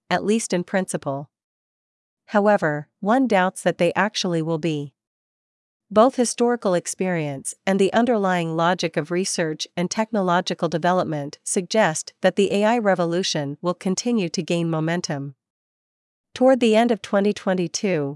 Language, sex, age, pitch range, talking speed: Vietnamese, female, 40-59, 165-205 Hz, 130 wpm